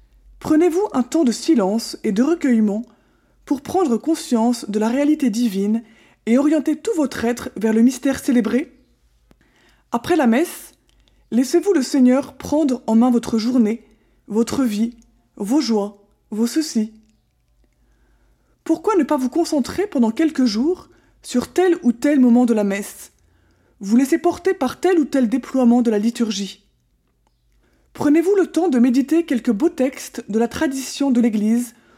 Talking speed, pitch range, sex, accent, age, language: 150 wpm, 225-295 Hz, female, French, 20-39, French